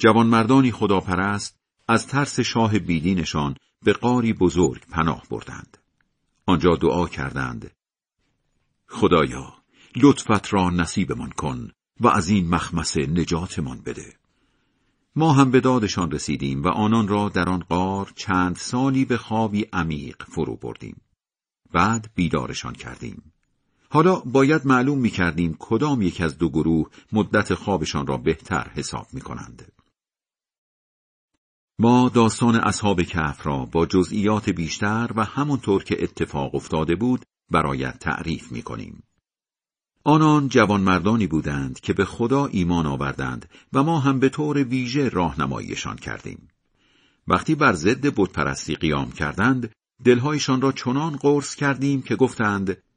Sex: male